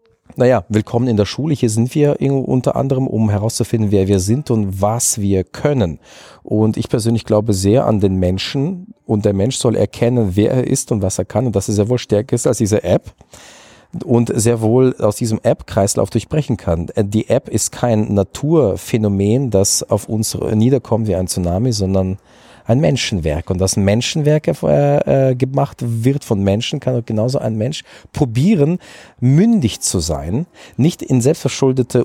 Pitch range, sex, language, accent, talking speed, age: 100-130 Hz, male, German, German, 170 wpm, 40-59